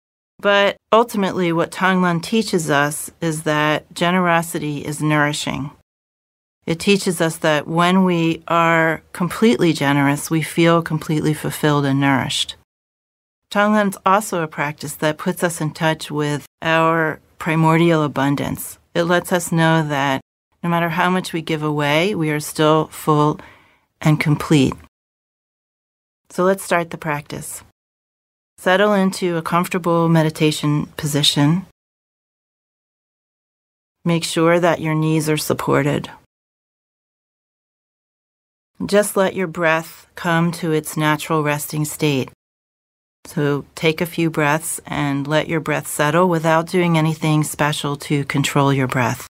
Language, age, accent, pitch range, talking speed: English, 40-59, American, 145-170 Hz, 125 wpm